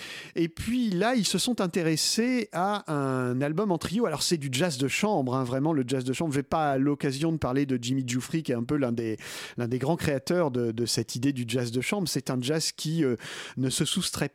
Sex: male